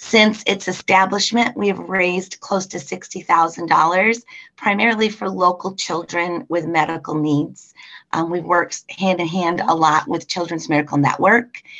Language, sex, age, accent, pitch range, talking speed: English, female, 30-49, American, 160-195 Hz, 130 wpm